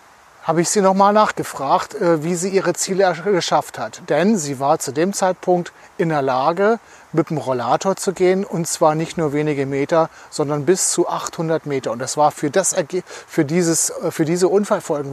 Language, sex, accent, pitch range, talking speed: German, male, German, 150-180 Hz, 190 wpm